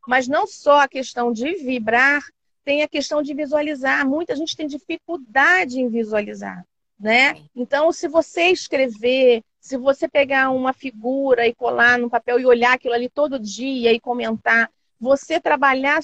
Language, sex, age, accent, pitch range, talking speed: Portuguese, female, 40-59, Brazilian, 235-295 Hz, 155 wpm